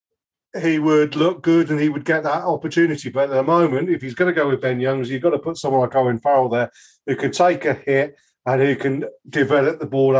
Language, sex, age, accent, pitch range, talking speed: English, male, 40-59, British, 140-175 Hz, 245 wpm